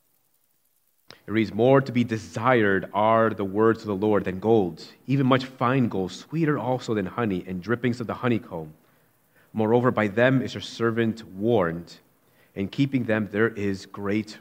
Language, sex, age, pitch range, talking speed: English, male, 30-49, 95-115 Hz, 165 wpm